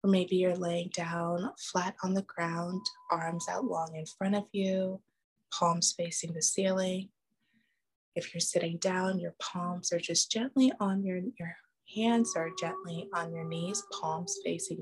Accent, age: American, 20-39